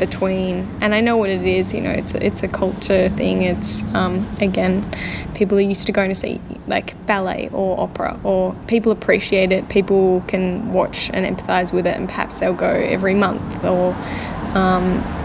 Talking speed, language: 185 wpm, English